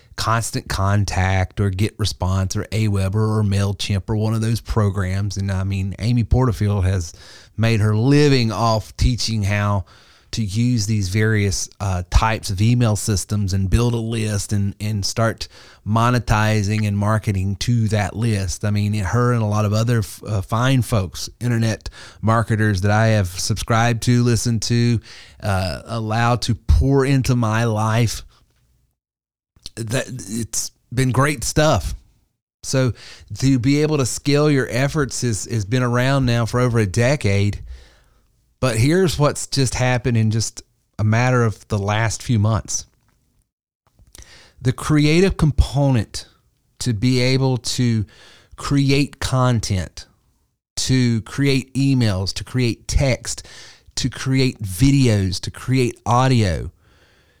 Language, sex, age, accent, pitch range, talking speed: English, male, 30-49, American, 100-125 Hz, 135 wpm